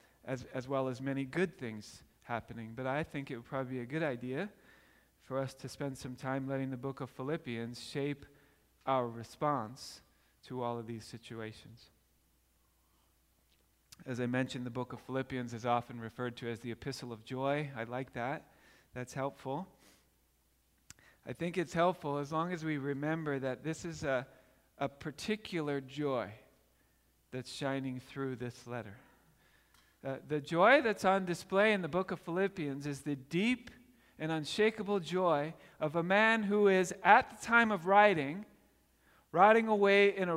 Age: 40-59